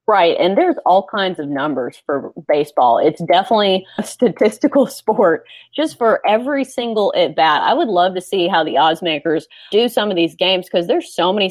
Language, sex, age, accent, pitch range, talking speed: English, female, 30-49, American, 165-210 Hz, 200 wpm